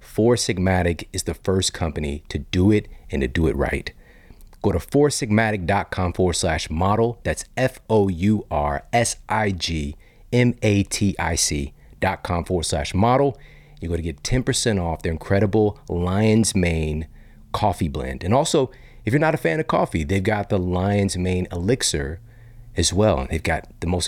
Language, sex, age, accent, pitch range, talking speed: English, male, 40-59, American, 80-110 Hz, 145 wpm